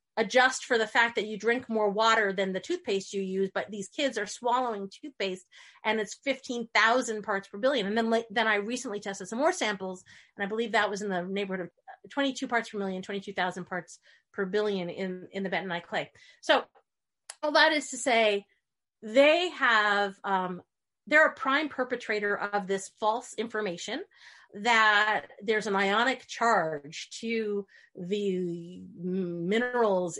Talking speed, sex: 165 wpm, female